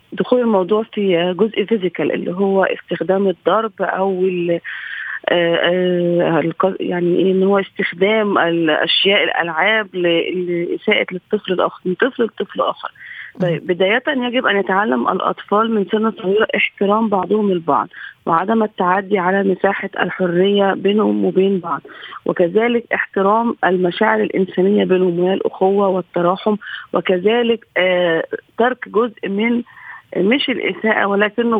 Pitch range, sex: 185-220 Hz, female